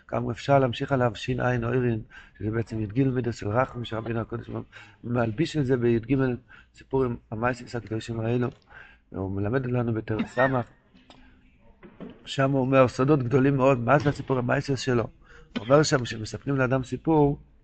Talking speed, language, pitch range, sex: 150 wpm, Hebrew, 120-145 Hz, male